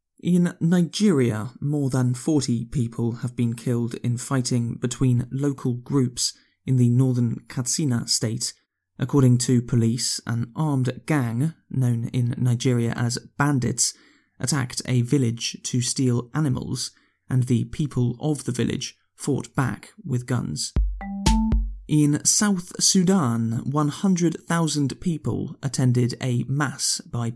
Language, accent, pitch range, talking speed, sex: English, British, 120-150 Hz, 120 wpm, male